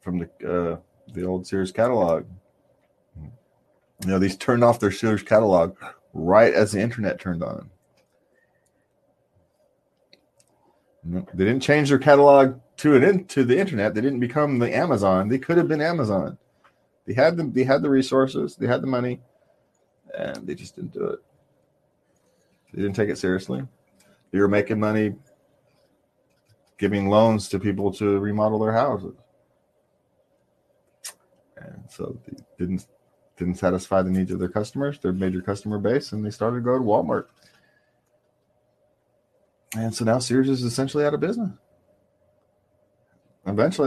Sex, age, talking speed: male, 30-49, 145 wpm